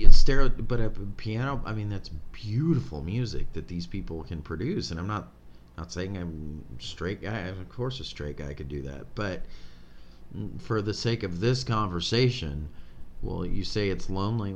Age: 30-49